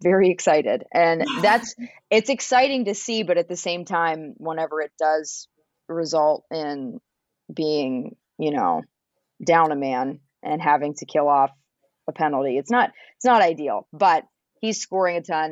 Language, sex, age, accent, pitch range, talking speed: English, female, 30-49, American, 150-200 Hz, 160 wpm